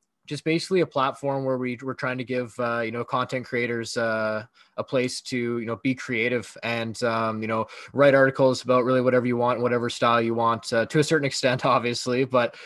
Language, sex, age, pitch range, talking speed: English, male, 20-39, 110-125 Hz, 215 wpm